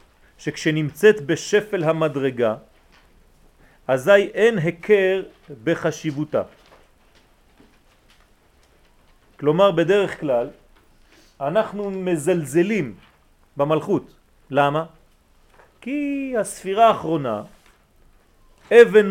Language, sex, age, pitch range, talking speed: French, male, 40-59, 145-200 Hz, 55 wpm